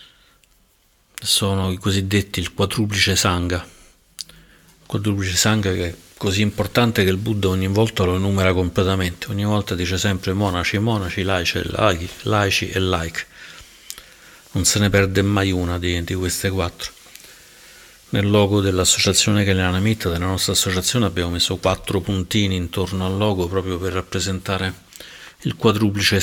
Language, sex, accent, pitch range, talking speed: Italian, male, native, 90-100 Hz, 140 wpm